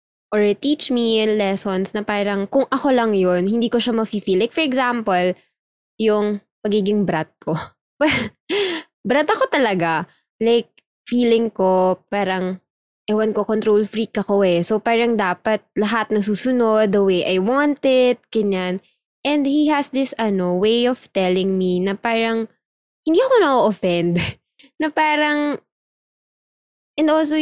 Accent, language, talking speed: Filipino, English, 140 wpm